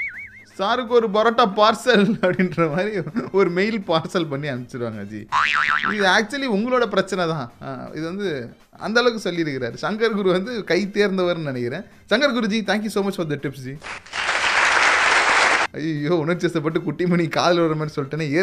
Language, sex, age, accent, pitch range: Tamil, male, 20-39, native, 145-210 Hz